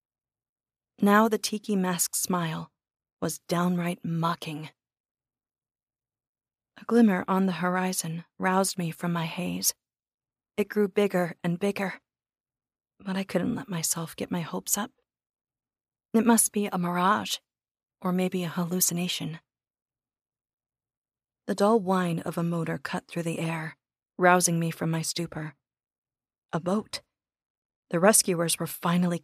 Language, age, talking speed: English, 30-49, 125 wpm